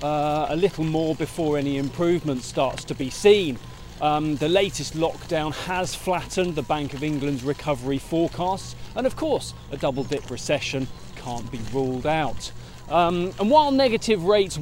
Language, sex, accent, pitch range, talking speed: English, male, British, 140-180 Hz, 155 wpm